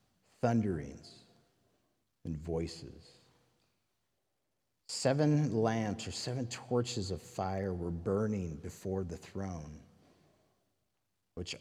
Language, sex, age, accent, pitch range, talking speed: English, male, 50-69, American, 95-140 Hz, 85 wpm